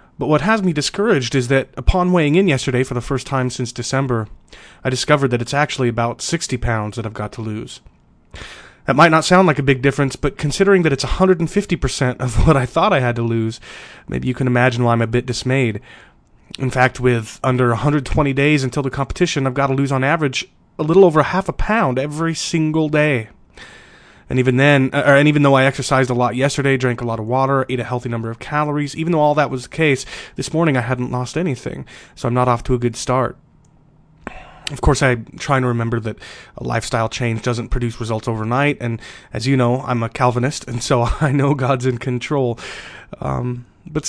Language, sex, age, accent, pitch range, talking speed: English, male, 30-49, American, 120-150 Hz, 215 wpm